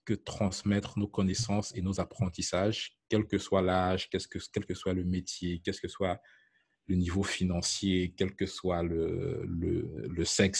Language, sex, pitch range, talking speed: French, male, 95-110 Hz, 165 wpm